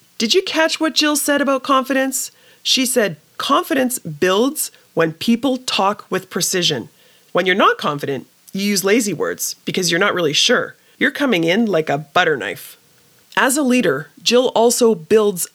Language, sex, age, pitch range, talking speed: English, female, 30-49, 165-250 Hz, 165 wpm